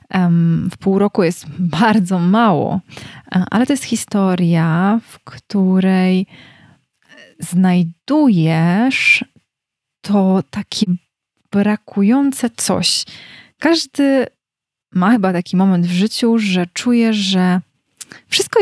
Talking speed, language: 90 wpm, Polish